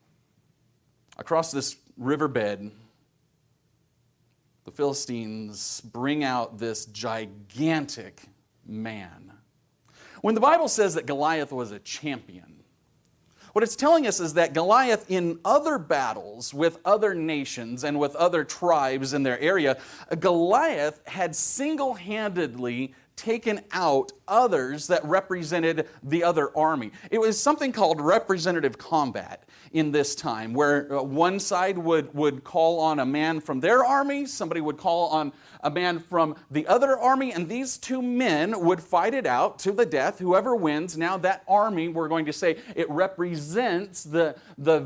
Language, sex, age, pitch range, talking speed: English, male, 40-59, 140-185 Hz, 140 wpm